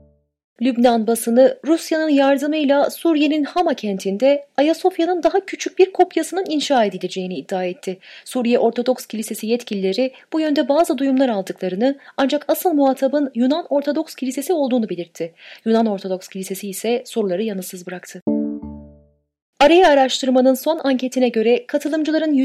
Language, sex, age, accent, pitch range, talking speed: Turkish, female, 30-49, native, 200-295 Hz, 125 wpm